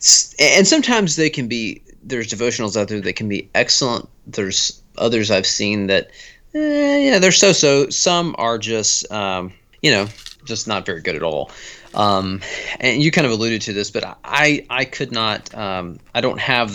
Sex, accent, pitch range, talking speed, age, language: male, American, 105-130 Hz, 185 wpm, 30-49, English